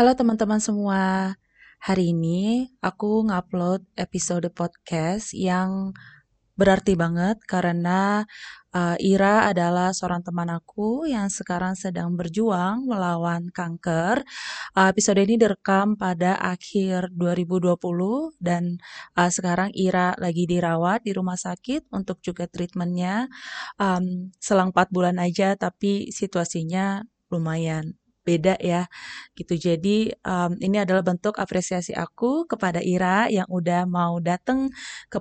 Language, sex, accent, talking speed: Indonesian, female, native, 120 wpm